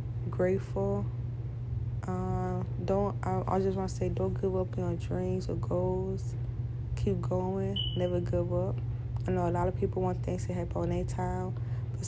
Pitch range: 100-120 Hz